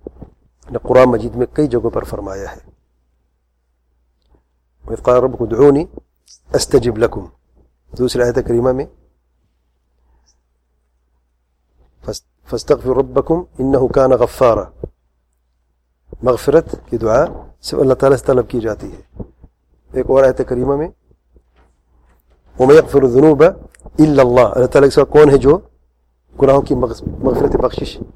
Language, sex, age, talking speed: English, male, 40-59, 85 wpm